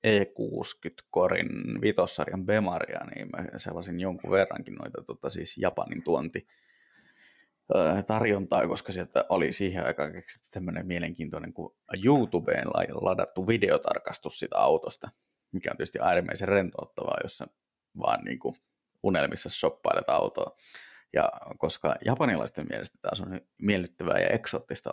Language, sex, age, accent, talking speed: Finnish, male, 20-39, native, 115 wpm